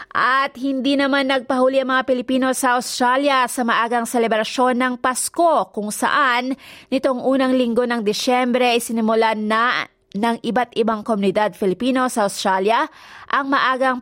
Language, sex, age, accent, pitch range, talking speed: Filipino, female, 20-39, native, 215-255 Hz, 140 wpm